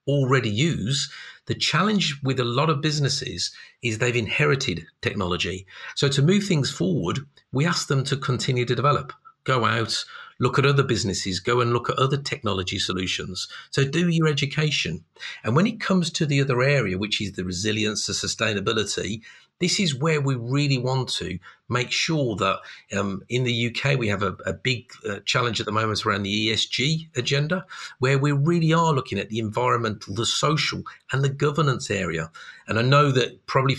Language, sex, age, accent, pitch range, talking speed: English, male, 50-69, British, 105-145 Hz, 185 wpm